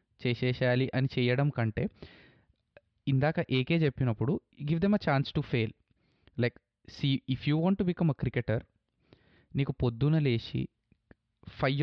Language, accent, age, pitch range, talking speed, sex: Telugu, native, 20-39, 125-155 Hz, 130 wpm, male